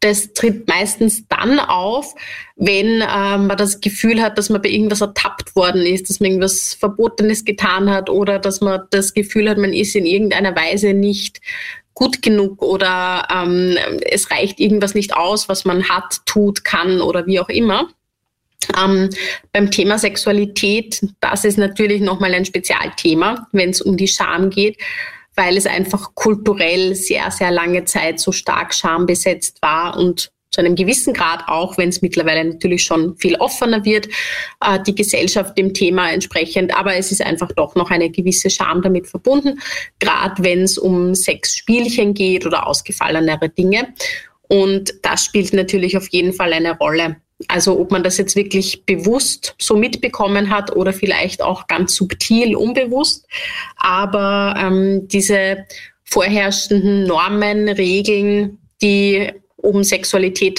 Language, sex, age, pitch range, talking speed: German, female, 20-39, 185-210 Hz, 155 wpm